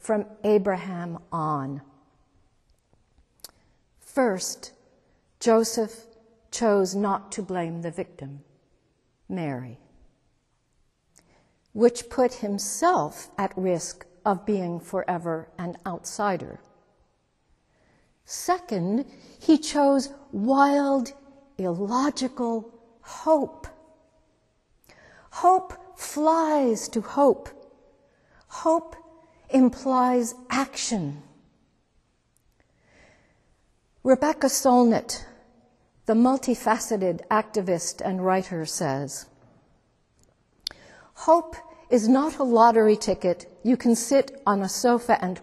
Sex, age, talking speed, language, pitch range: female, 60-79, 75 wpm, English, 185-275 Hz